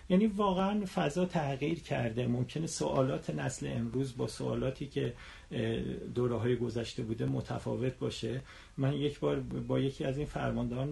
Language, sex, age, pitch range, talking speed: Persian, male, 40-59, 135-185 Hz, 135 wpm